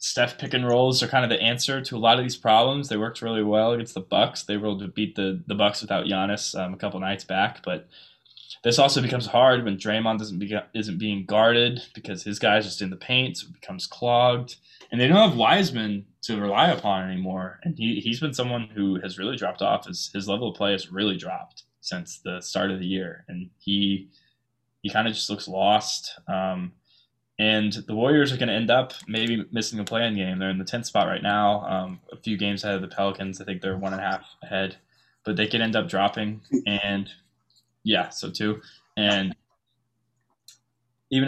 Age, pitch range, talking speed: 20-39, 100-120 Hz, 220 wpm